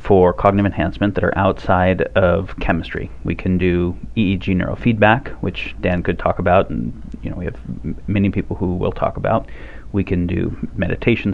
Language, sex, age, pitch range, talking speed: English, male, 30-49, 90-100 Hz, 180 wpm